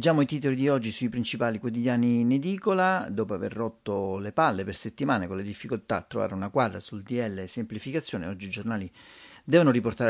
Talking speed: 195 wpm